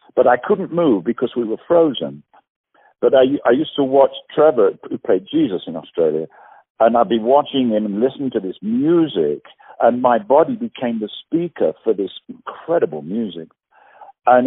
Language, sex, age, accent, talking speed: English, male, 50-69, British, 170 wpm